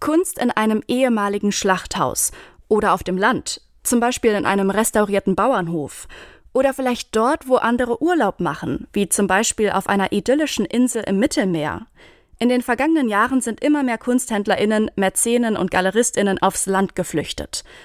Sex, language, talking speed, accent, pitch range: female, German, 150 wpm, German, 195-245 Hz